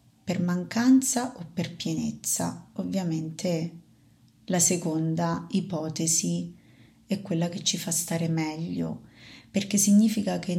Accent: native